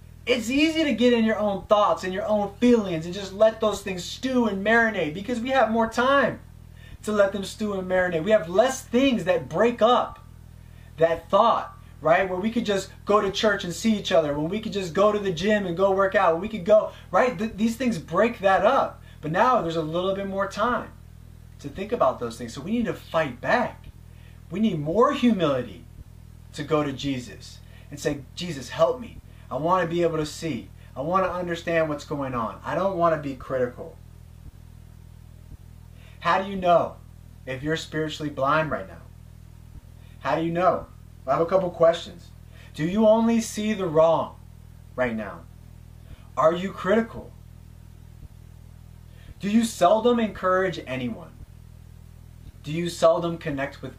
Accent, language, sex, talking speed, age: American, English, male, 185 wpm, 20-39